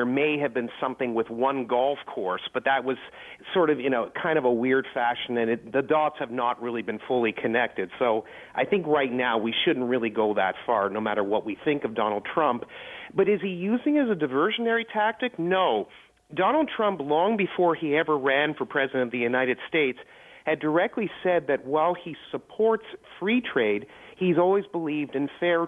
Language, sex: English, male